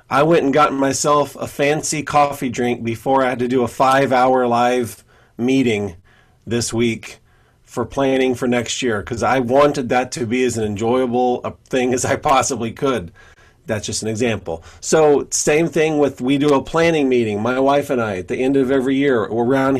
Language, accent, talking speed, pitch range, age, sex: English, American, 195 wpm, 125-150 Hz, 40-59, male